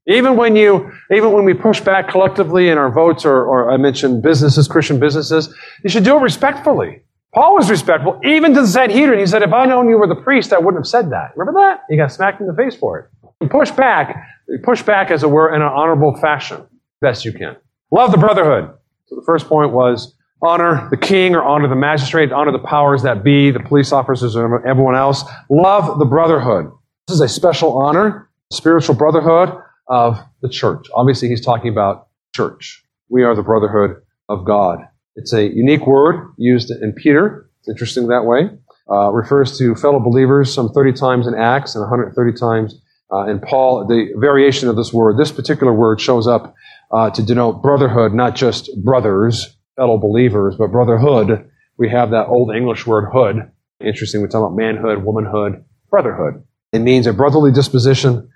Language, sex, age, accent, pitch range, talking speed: English, male, 40-59, American, 120-165 Hz, 195 wpm